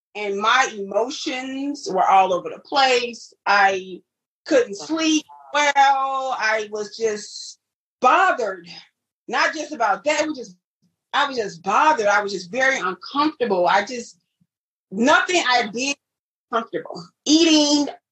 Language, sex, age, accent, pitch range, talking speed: English, female, 30-49, American, 220-310 Hz, 125 wpm